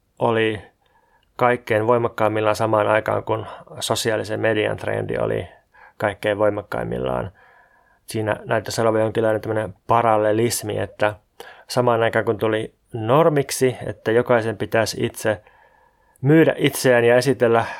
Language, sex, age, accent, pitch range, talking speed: Finnish, male, 20-39, native, 110-125 Hz, 105 wpm